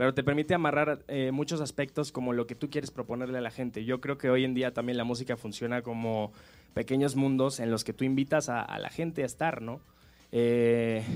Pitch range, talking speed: 120-145 Hz, 225 wpm